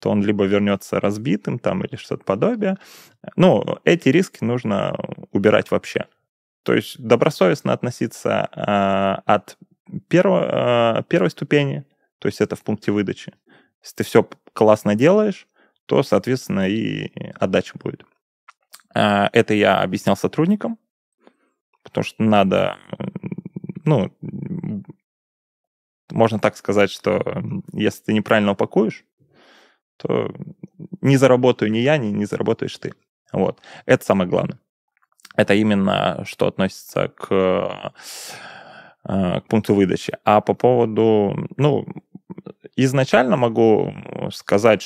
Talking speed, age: 110 wpm, 20-39